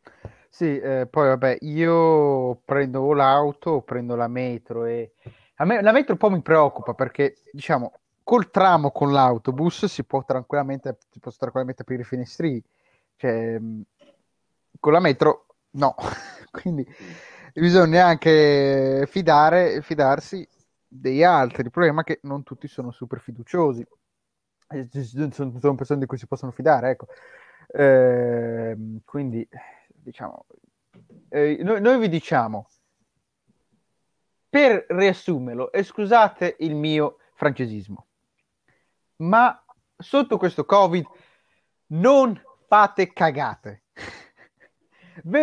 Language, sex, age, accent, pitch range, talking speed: Italian, male, 20-39, native, 130-185 Hz, 115 wpm